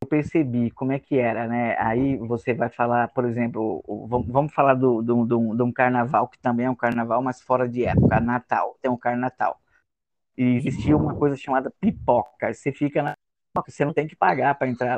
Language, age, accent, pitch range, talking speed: Portuguese, 20-39, Brazilian, 115-135 Hz, 210 wpm